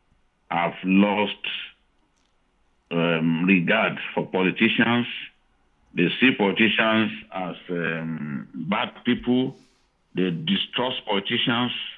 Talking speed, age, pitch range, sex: 80 wpm, 50-69, 90-120 Hz, male